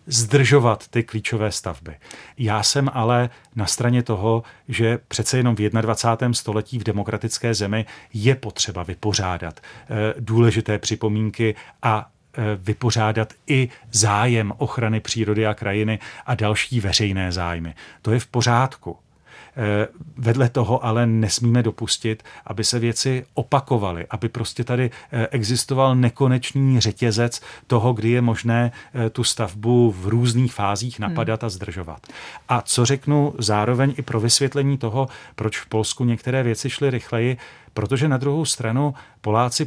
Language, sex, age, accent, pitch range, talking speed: Czech, male, 40-59, native, 110-125 Hz, 130 wpm